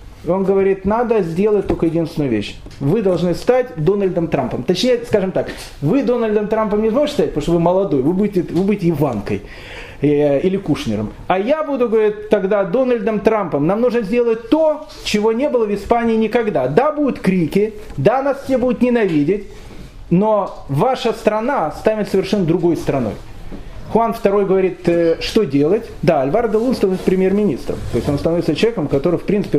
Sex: male